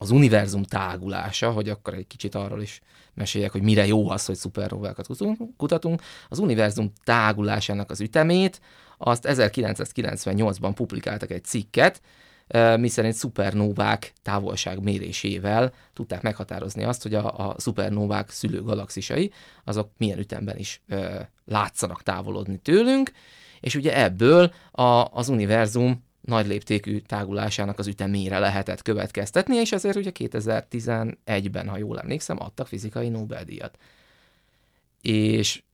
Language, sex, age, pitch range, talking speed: Hungarian, male, 30-49, 105-135 Hz, 120 wpm